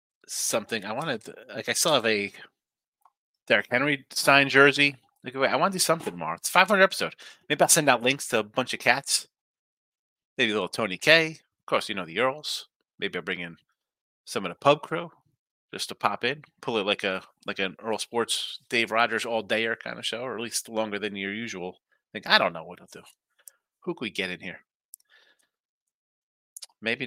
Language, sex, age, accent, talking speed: English, male, 30-49, American, 210 wpm